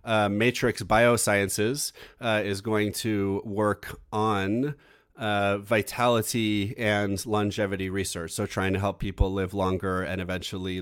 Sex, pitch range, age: male, 100-125 Hz, 30-49